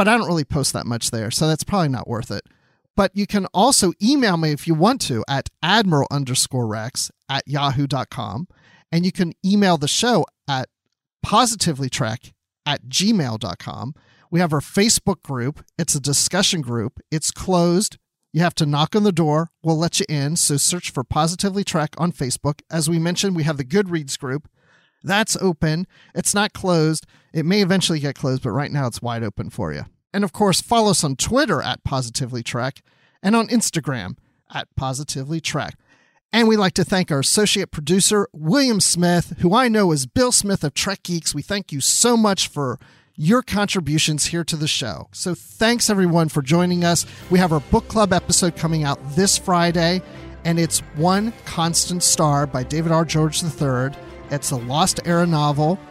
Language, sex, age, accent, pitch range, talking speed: English, male, 40-59, American, 140-185 Hz, 185 wpm